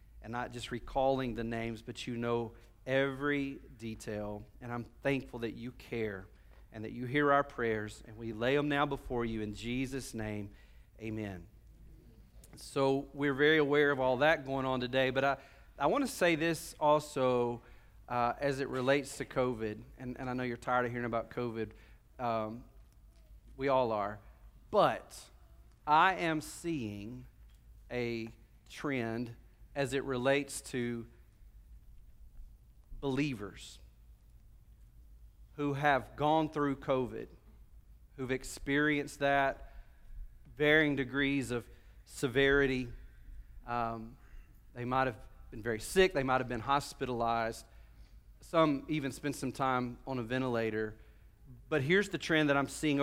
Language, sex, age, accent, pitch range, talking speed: English, male, 40-59, American, 115-140 Hz, 135 wpm